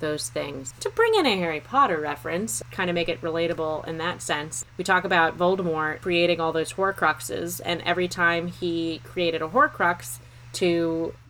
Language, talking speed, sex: English, 175 wpm, female